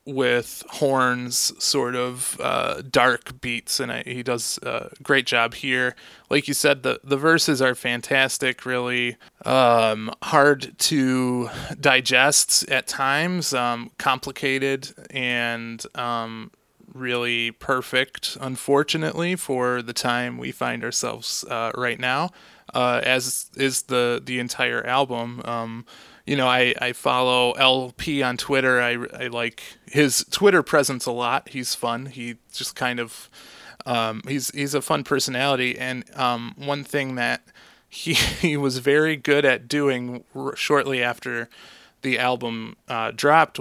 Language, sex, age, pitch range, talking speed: English, male, 20-39, 120-140 Hz, 135 wpm